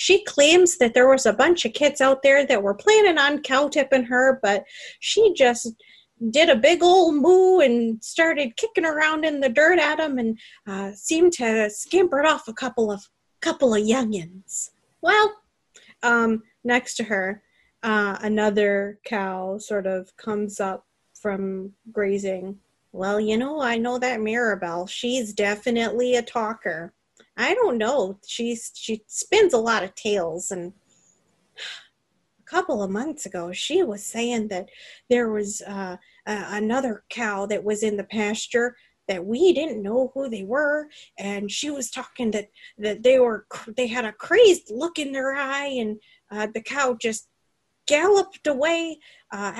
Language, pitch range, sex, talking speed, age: English, 210-290 Hz, female, 160 wpm, 30-49